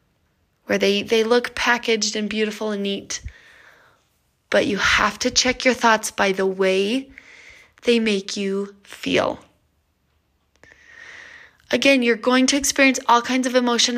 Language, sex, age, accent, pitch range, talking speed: English, female, 20-39, American, 220-300 Hz, 135 wpm